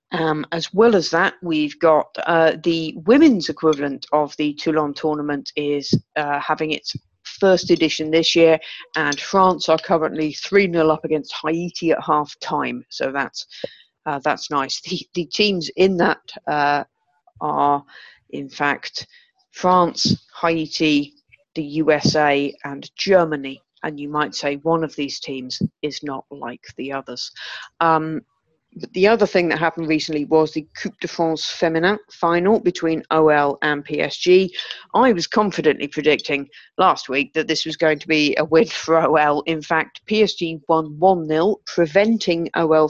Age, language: 40-59, English